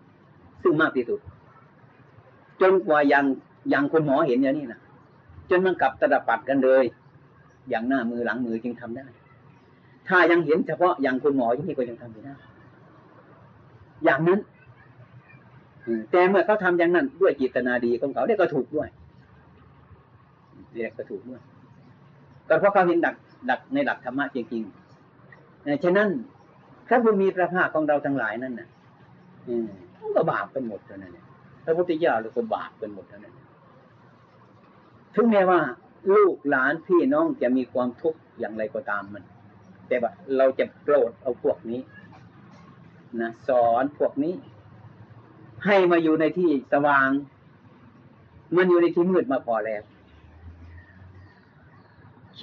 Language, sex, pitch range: Thai, male, 120-170 Hz